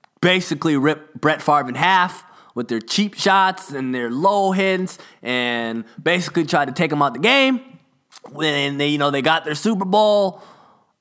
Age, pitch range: 20-39, 150-200 Hz